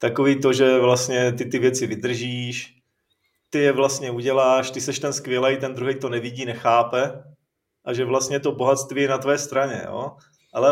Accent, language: native, Czech